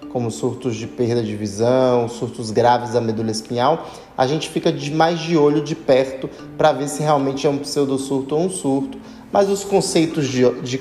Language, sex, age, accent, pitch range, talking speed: Portuguese, male, 20-39, Brazilian, 130-165 Hz, 190 wpm